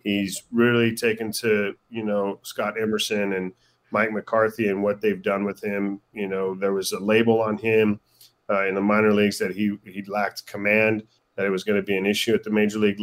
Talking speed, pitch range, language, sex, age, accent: 215 wpm, 100-115 Hz, English, male, 30-49, American